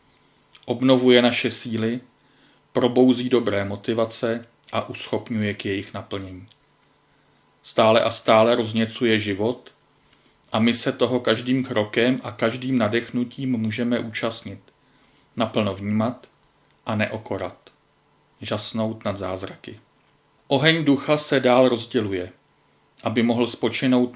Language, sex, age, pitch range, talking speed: Czech, male, 40-59, 110-125 Hz, 105 wpm